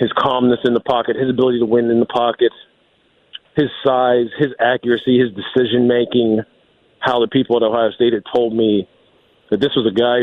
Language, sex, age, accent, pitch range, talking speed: English, male, 40-59, American, 115-140 Hz, 195 wpm